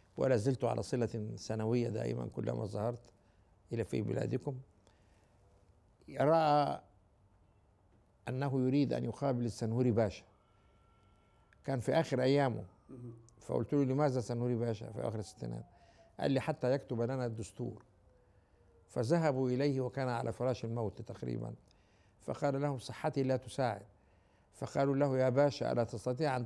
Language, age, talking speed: Arabic, 60-79, 125 wpm